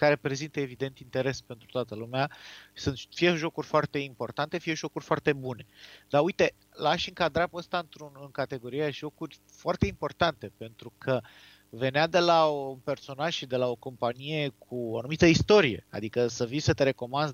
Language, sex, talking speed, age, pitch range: Romanian, male, 170 wpm, 30-49, 125-160 Hz